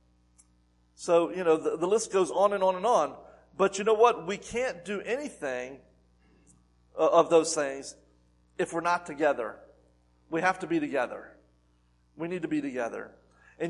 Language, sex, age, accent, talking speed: English, male, 40-59, American, 165 wpm